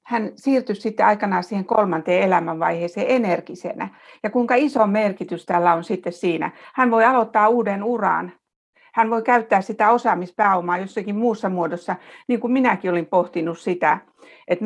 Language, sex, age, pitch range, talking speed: Finnish, female, 60-79, 175-220 Hz, 145 wpm